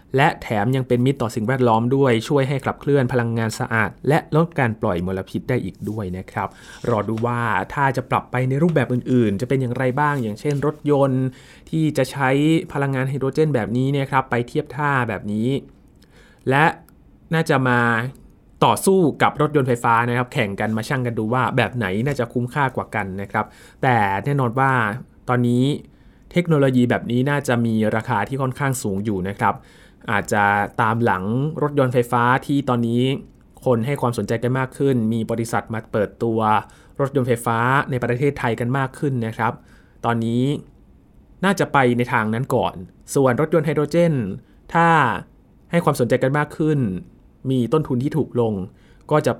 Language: Thai